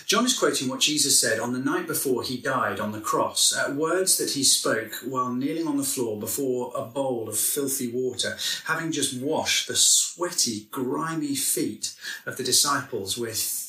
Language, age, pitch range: English, 30-49, 120-160 Hz